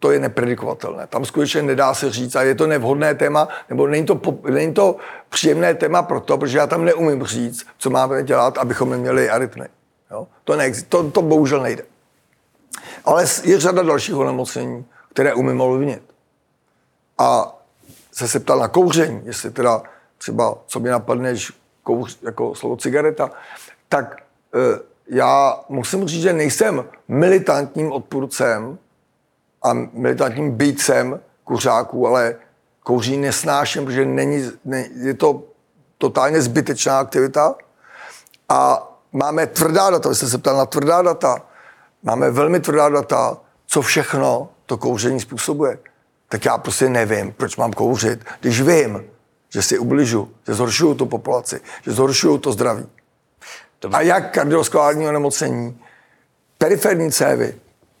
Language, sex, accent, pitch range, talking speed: Czech, male, native, 125-155 Hz, 135 wpm